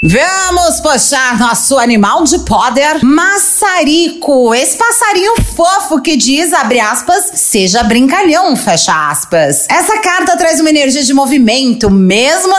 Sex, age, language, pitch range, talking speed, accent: female, 30-49, Portuguese, 250-315 Hz, 125 wpm, Brazilian